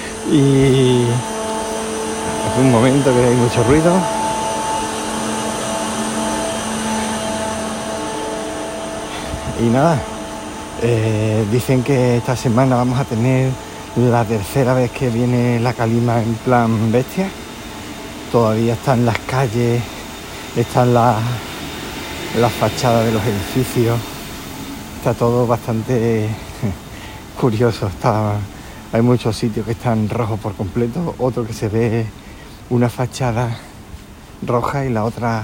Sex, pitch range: male, 105-125 Hz